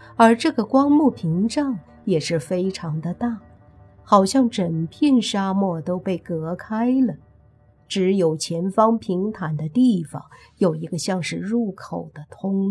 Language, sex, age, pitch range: Chinese, female, 50-69, 160-205 Hz